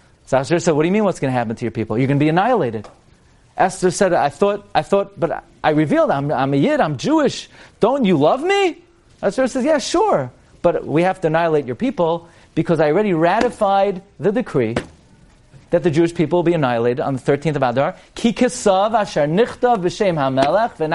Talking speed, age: 180 wpm, 40-59